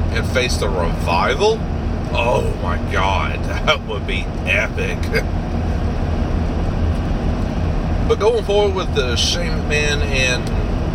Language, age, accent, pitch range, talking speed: English, 40-59, American, 80-90 Hz, 105 wpm